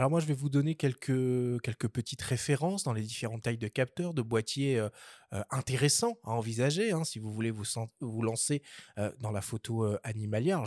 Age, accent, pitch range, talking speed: 20-39, French, 115-150 Hz, 210 wpm